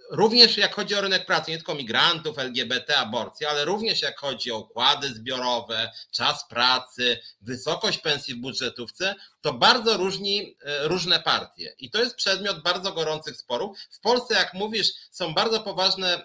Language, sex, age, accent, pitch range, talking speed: Polish, male, 30-49, native, 135-195 Hz, 160 wpm